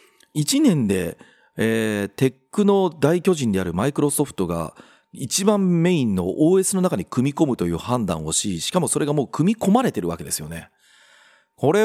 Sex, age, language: male, 40-59, Japanese